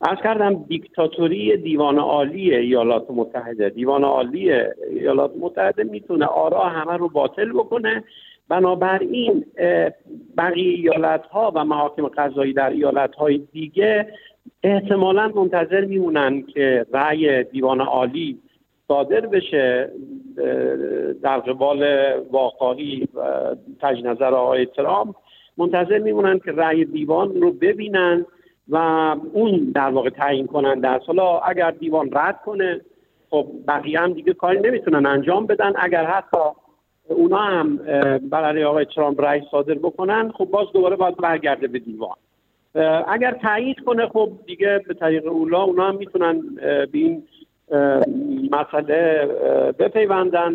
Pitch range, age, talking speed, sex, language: 145-215 Hz, 50-69, 120 wpm, male, Persian